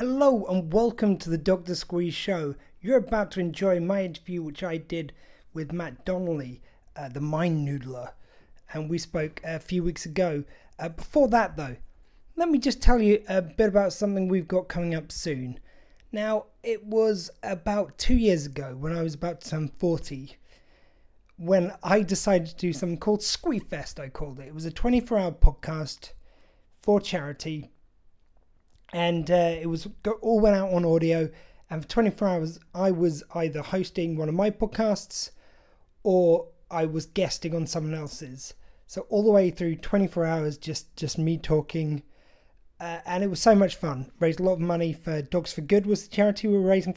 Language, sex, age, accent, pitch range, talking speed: English, male, 30-49, British, 155-205 Hz, 185 wpm